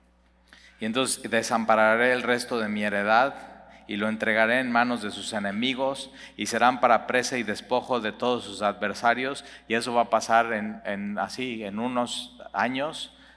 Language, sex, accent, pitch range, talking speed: Spanish, male, Mexican, 105-120 Hz, 165 wpm